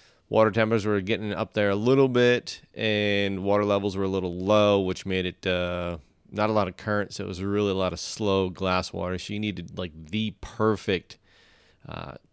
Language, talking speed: English, 205 wpm